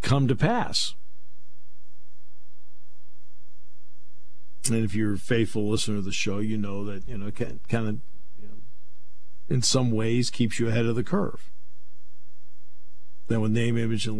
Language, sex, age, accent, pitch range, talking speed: English, male, 50-69, American, 100-135 Hz, 150 wpm